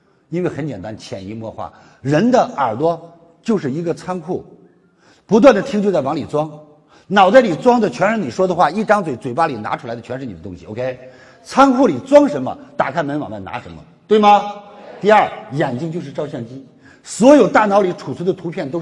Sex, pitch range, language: male, 135-205 Hz, Chinese